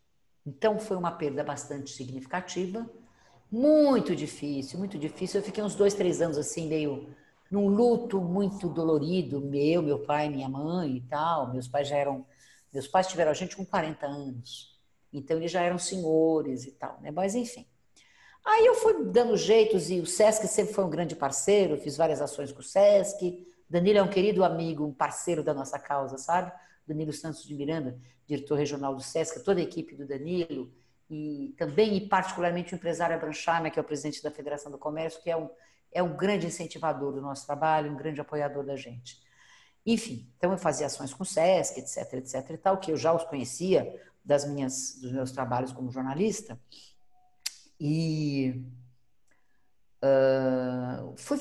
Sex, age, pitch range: female, 50-69, 145-190 Hz